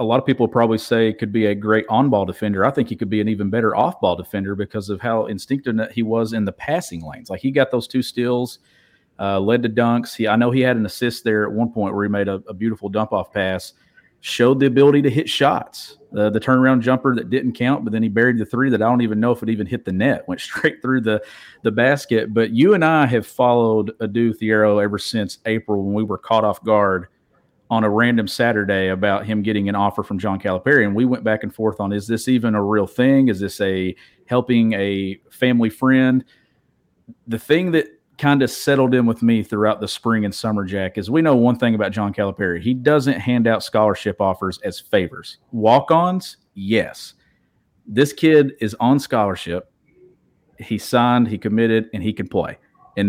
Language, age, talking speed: English, 40-59, 215 wpm